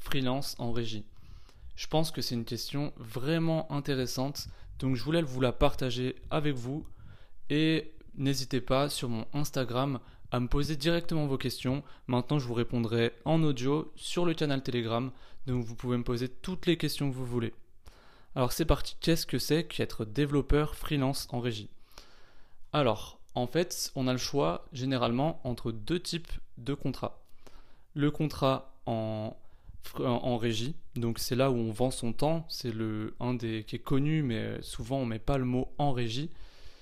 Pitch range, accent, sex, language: 115-145 Hz, French, male, French